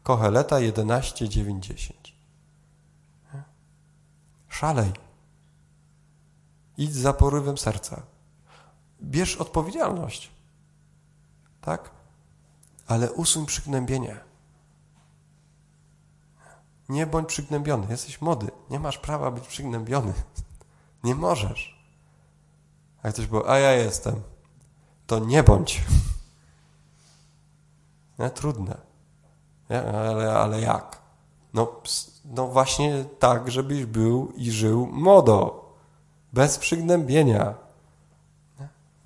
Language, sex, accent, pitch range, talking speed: Polish, male, native, 110-150 Hz, 80 wpm